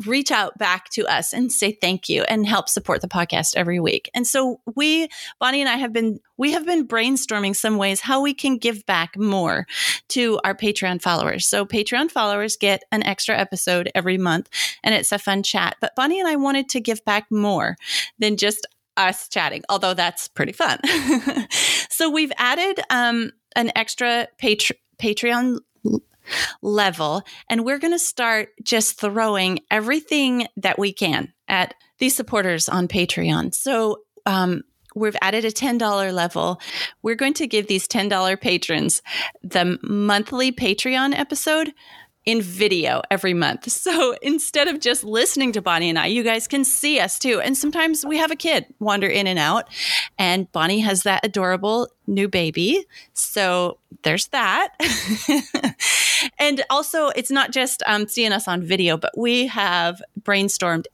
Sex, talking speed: female, 165 wpm